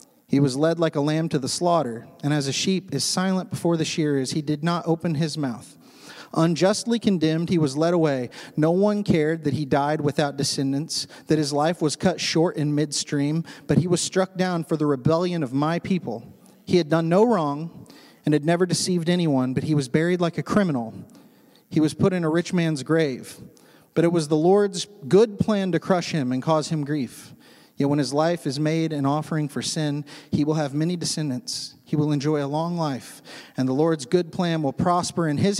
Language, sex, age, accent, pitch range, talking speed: English, male, 30-49, American, 150-180 Hz, 210 wpm